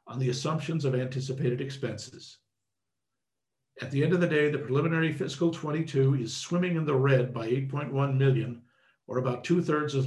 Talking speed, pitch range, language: 165 wpm, 125-150 Hz, English